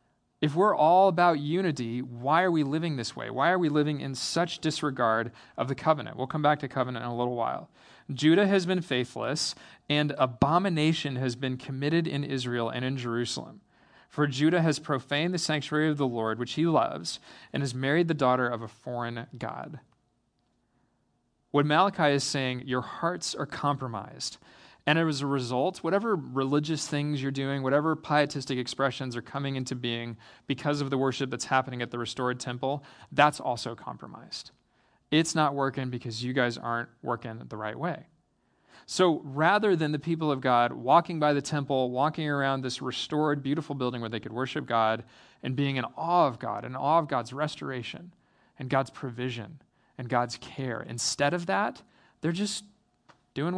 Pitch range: 125-155 Hz